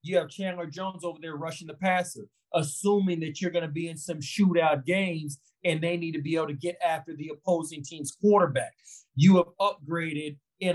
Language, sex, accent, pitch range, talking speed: English, male, American, 160-200 Hz, 200 wpm